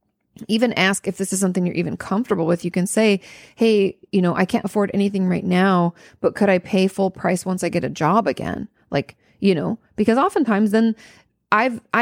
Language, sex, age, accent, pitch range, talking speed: English, female, 30-49, American, 175-215 Hz, 205 wpm